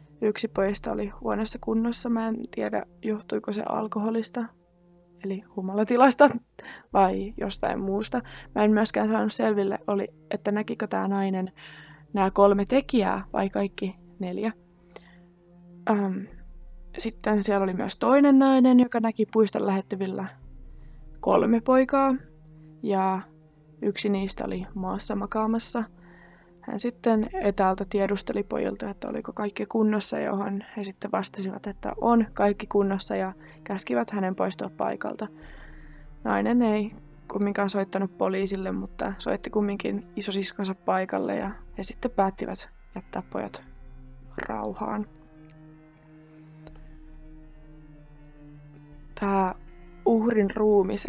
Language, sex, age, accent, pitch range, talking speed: Finnish, female, 20-39, native, 155-215 Hz, 110 wpm